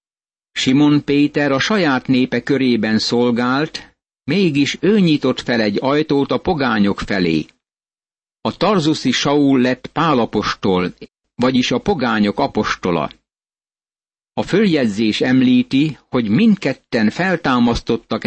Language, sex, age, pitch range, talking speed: Hungarian, male, 50-69, 115-150 Hz, 100 wpm